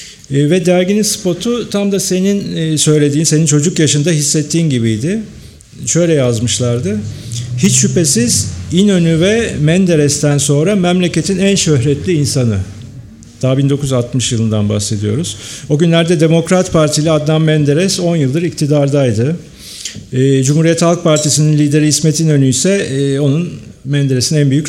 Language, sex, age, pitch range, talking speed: Turkish, male, 50-69, 130-165 Hz, 115 wpm